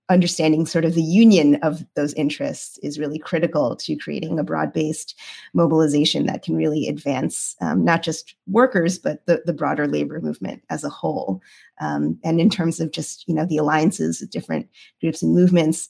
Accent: American